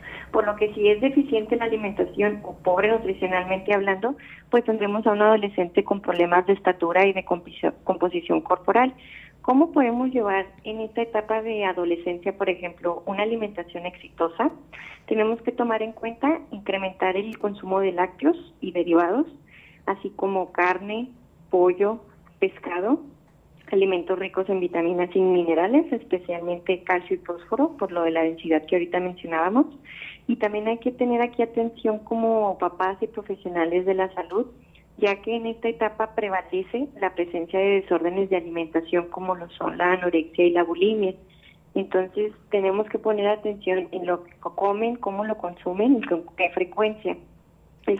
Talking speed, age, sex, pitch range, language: 155 wpm, 30-49, female, 180-220 Hz, Spanish